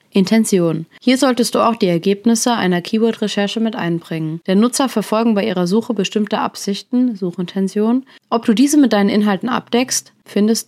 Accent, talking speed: German, 155 wpm